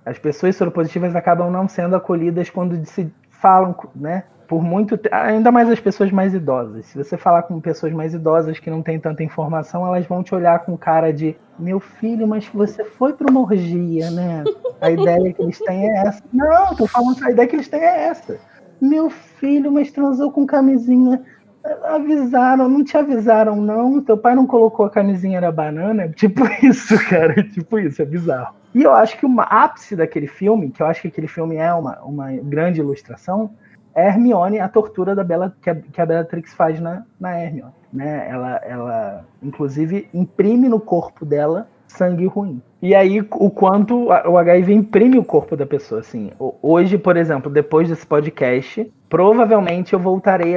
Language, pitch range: Portuguese, 160-220 Hz